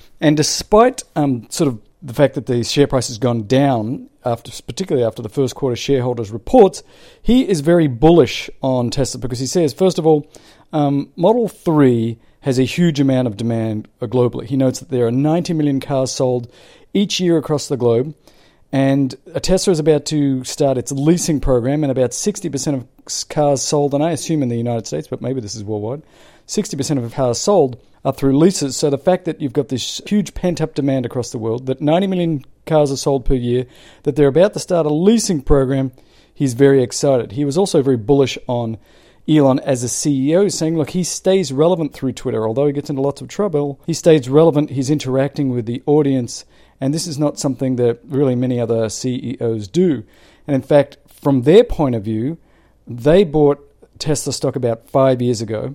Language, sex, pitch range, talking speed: English, male, 125-155 Hz, 200 wpm